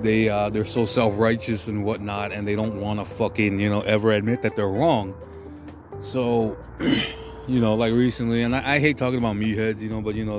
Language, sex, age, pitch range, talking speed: English, male, 20-39, 105-120 Hz, 215 wpm